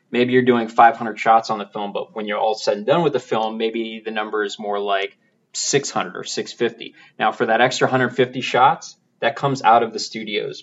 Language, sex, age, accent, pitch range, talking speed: English, male, 20-39, American, 115-155 Hz, 220 wpm